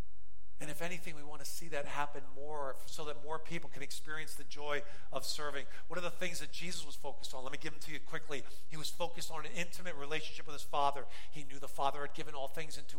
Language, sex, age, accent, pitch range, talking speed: English, male, 40-59, American, 145-205 Hz, 255 wpm